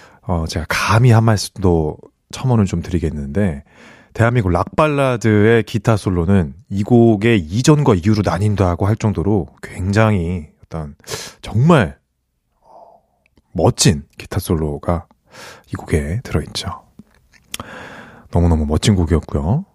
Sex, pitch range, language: male, 80-125 Hz, Korean